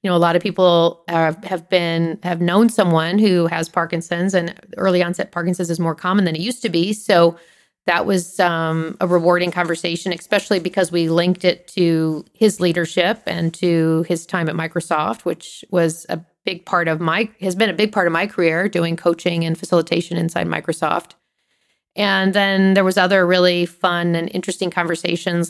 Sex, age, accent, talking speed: female, 40-59, American, 185 wpm